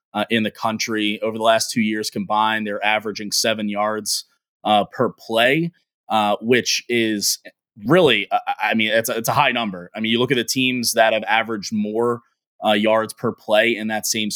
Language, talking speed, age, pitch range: English, 195 wpm, 20-39, 105-120 Hz